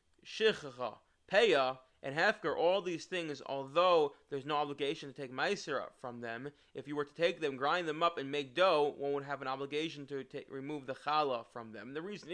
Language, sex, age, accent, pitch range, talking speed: English, male, 20-39, American, 135-160 Hz, 205 wpm